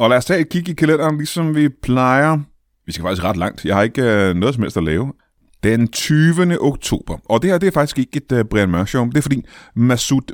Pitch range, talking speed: 100-140 Hz, 250 wpm